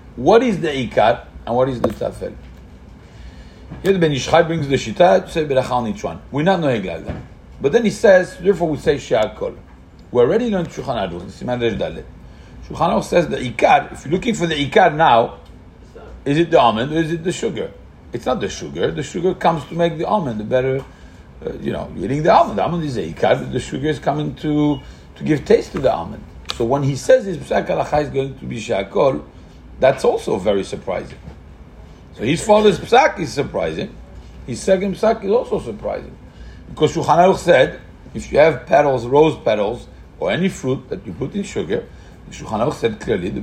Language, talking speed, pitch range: English, 195 wpm, 120-175 Hz